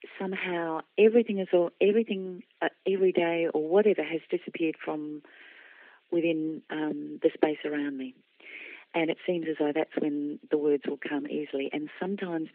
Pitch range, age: 155-200 Hz, 40-59